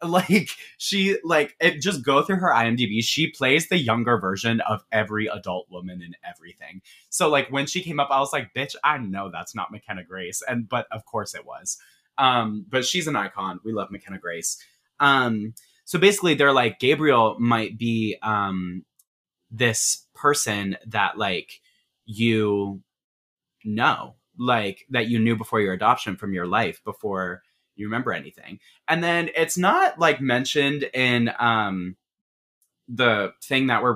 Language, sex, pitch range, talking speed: English, male, 105-140 Hz, 165 wpm